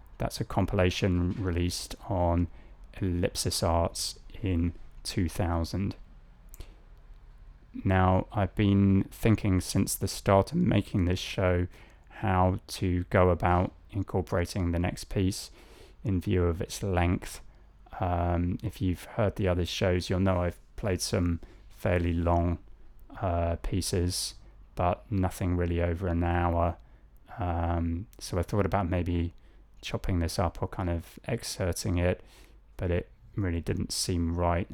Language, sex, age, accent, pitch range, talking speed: English, male, 20-39, British, 85-100 Hz, 130 wpm